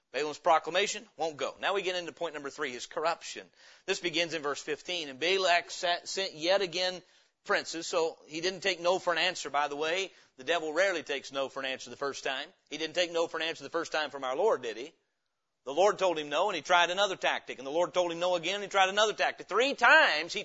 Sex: male